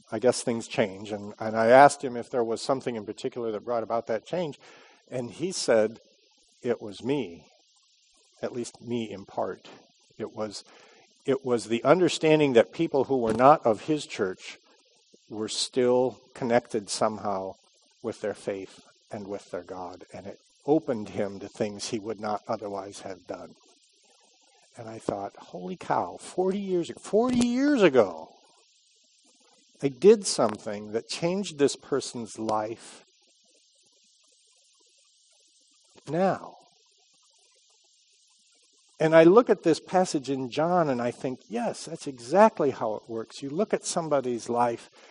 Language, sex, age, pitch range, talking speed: English, male, 50-69, 115-175 Hz, 145 wpm